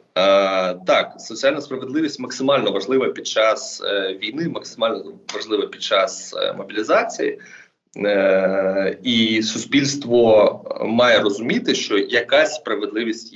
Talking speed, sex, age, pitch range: 105 wpm, male, 20-39, 100-145 Hz